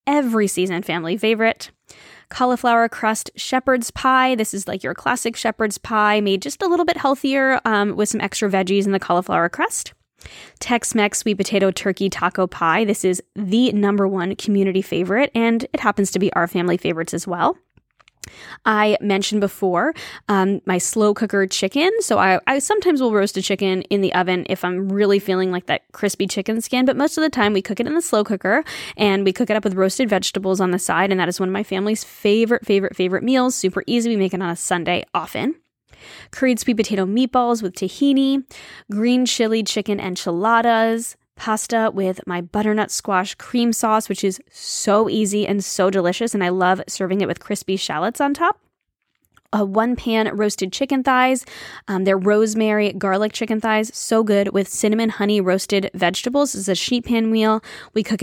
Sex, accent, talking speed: female, American, 190 wpm